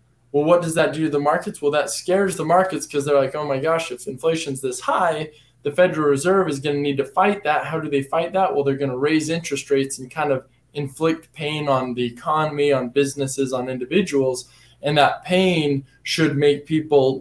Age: 20-39